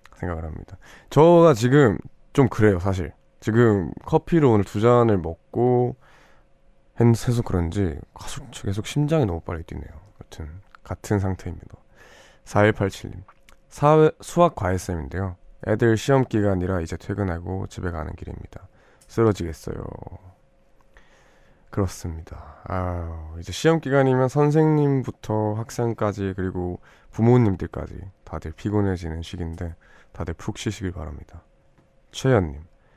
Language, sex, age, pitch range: Korean, male, 20-39, 85-115 Hz